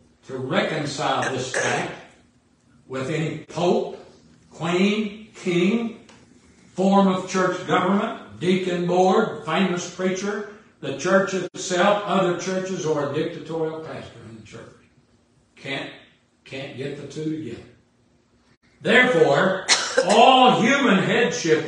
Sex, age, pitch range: male, 60-79, 135-190 Hz